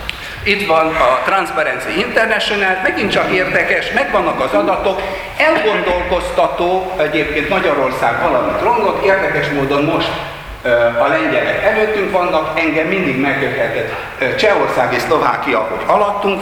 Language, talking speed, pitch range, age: Hungarian, 115 wpm, 145-210 Hz, 60-79